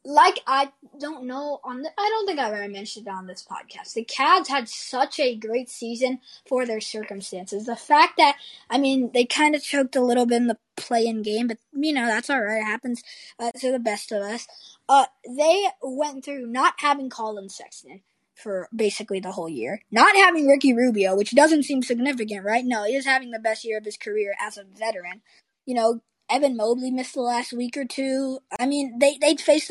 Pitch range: 225-280 Hz